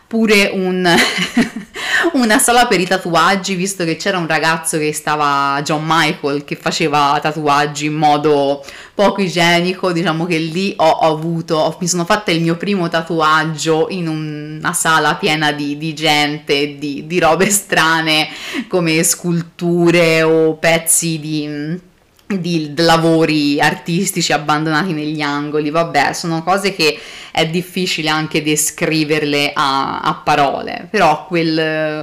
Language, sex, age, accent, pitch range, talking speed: Italian, female, 30-49, native, 150-170 Hz, 135 wpm